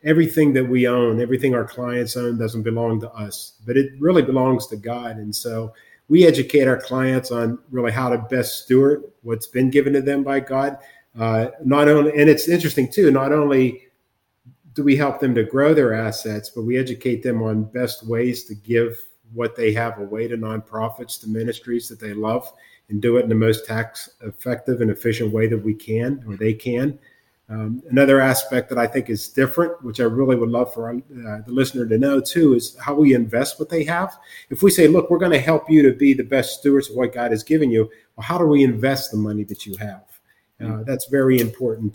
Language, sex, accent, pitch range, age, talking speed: English, male, American, 115-135 Hz, 50-69, 215 wpm